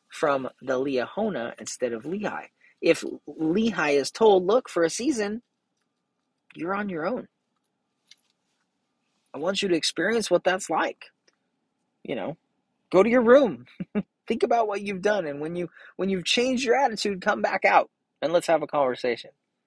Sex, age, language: male, 30-49, English